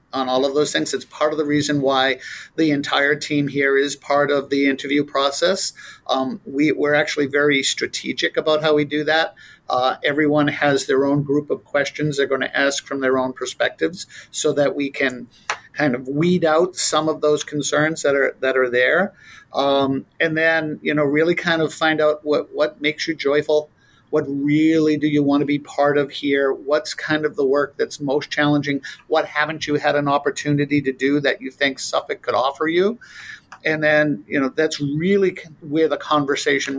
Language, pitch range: English, 140-155 Hz